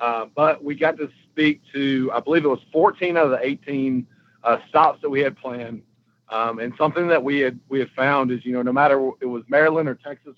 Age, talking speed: 50-69, 235 wpm